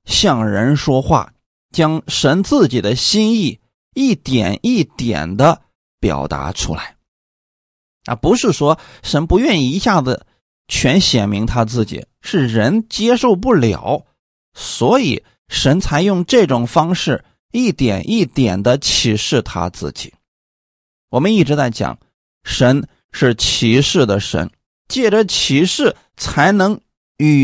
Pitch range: 120-195 Hz